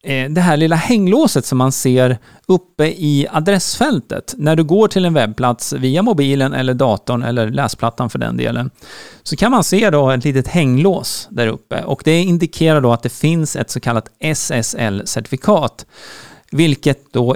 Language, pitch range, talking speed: Swedish, 125-170 Hz, 160 wpm